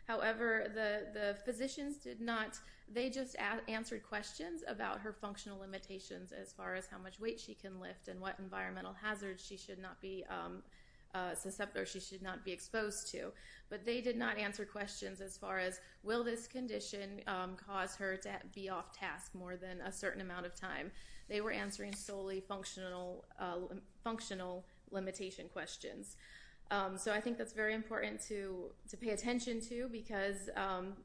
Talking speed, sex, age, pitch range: 175 wpm, female, 30-49, 190-220 Hz